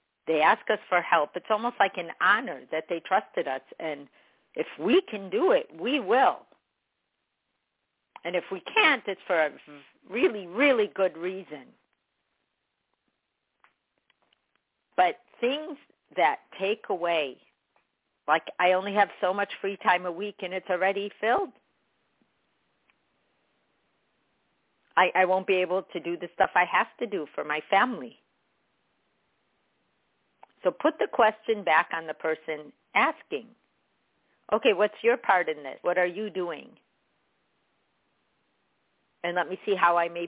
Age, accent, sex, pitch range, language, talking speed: 50-69, American, female, 170-225 Hz, English, 140 wpm